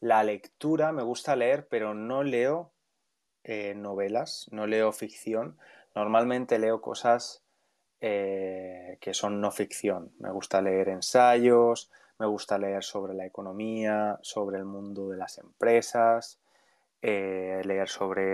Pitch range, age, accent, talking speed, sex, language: 100-115 Hz, 20-39, Spanish, 130 wpm, male, English